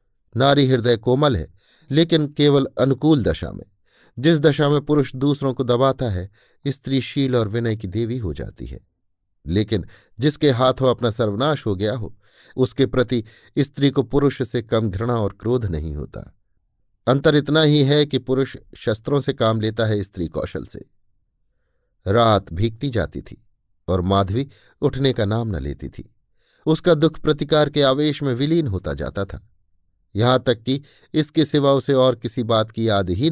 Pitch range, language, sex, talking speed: 100-140 Hz, Hindi, male, 170 wpm